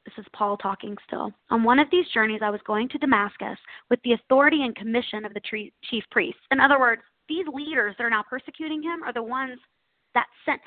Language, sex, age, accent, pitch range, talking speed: English, female, 20-39, American, 210-255 Hz, 220 wpm